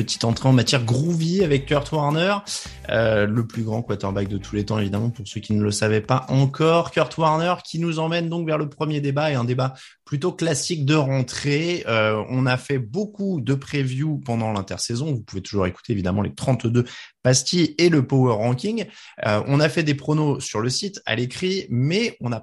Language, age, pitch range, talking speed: French, 20-39, 115-155 Hz, 210 wpm